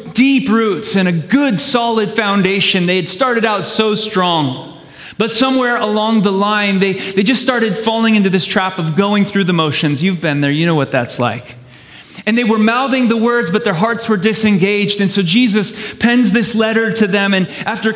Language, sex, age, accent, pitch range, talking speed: English, male, 30-49, American, 155-220 Hz, 200 wpm